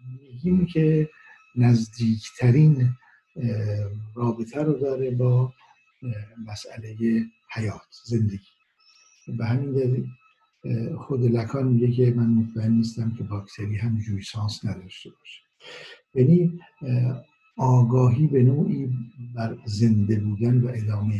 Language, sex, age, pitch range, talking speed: Persian, male, 60-79, 110-130 Hz, 95 wpm